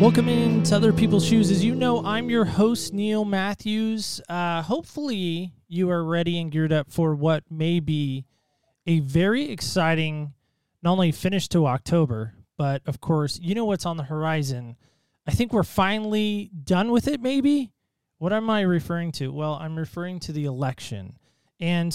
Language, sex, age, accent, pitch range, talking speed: English, male, 20-39, American, 155-210 Hz, 170 wpm